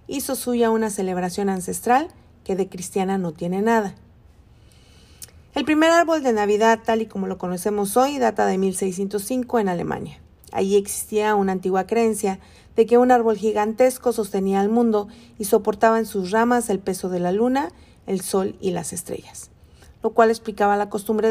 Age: 40-59